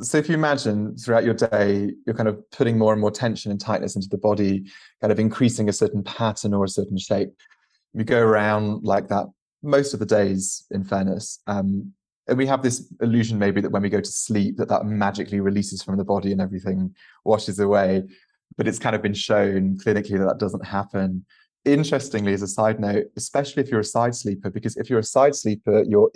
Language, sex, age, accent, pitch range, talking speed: English, male, 20-39, British, 100-120 Hz, 215 wpm